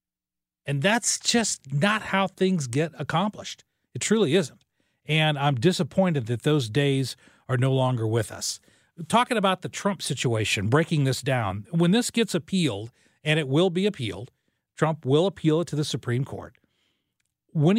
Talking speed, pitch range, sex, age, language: 160 wpm, 135-190 Hz, male, 40-59, English